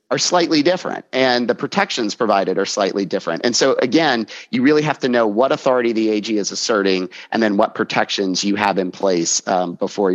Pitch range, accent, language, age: 105-125 Hz, American, English, 30-49